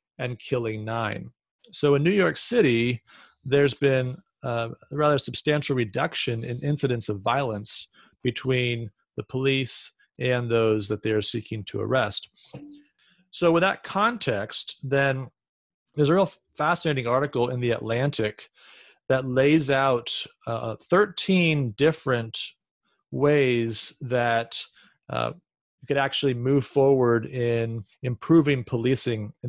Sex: male